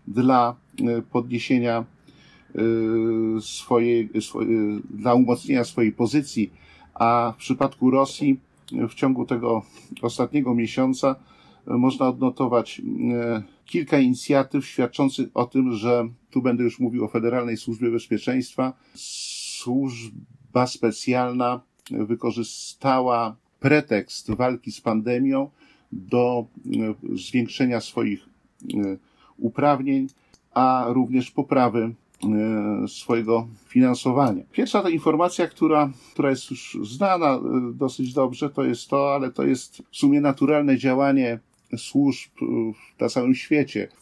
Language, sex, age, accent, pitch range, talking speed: Polish, male, 50-69, native, 115-135 Hz, 100 wpm